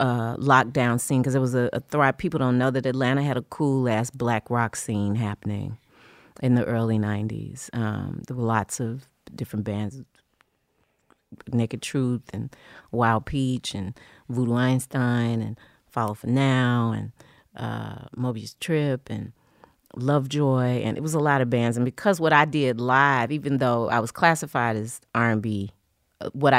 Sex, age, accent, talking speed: female, 40-59, American, 160 wpm